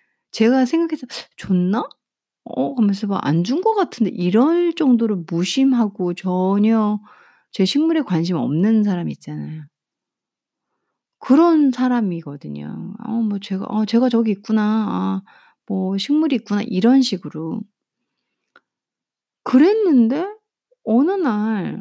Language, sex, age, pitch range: Korean, female, 30-49, 175-250 Hz